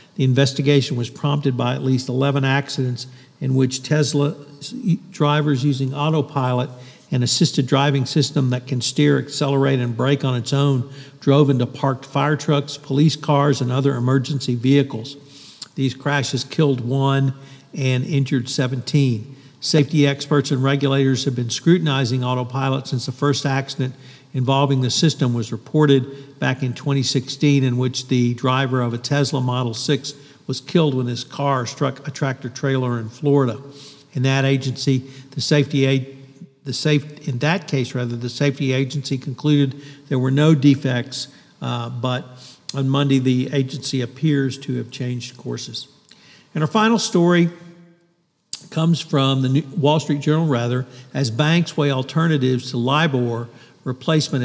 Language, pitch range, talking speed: English, 130-145 Hz, 145 wpm